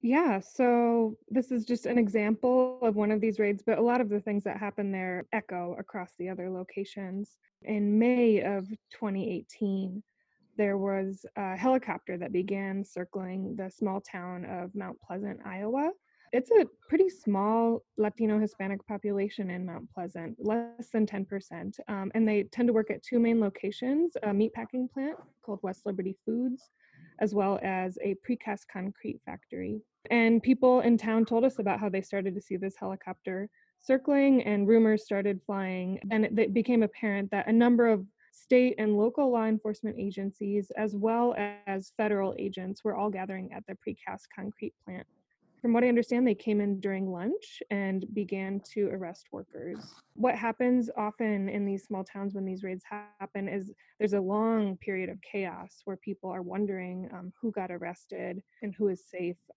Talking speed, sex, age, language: 170 wpm, female, 20-39, English